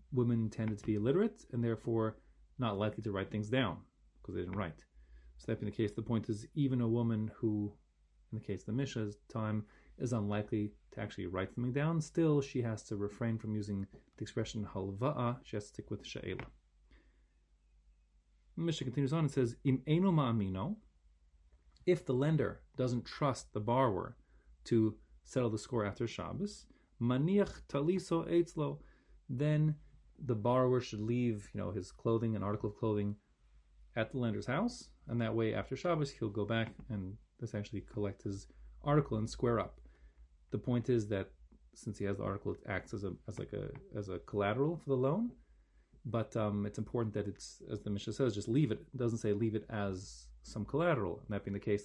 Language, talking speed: English, 185 wpm